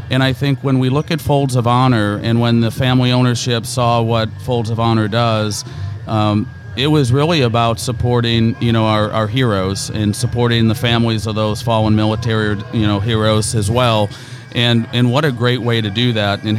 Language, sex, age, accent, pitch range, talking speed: English, male, 40-59, American, 110-130 Hz, 200 wpm